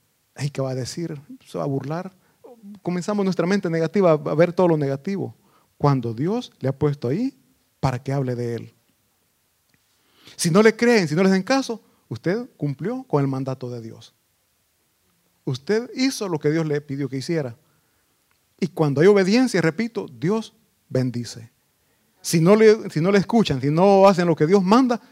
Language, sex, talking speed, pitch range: Italian, male, 175 wpm, 140-210 Hz